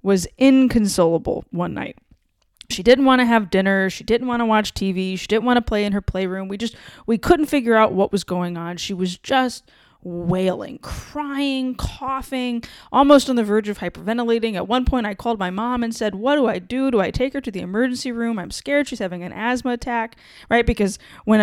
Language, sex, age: English, female, 20-39